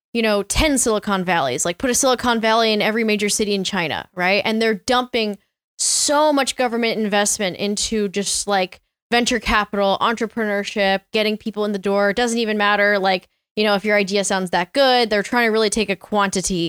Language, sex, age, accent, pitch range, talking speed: English, female, 10-29, American, 195-240 Hz, 200 wpm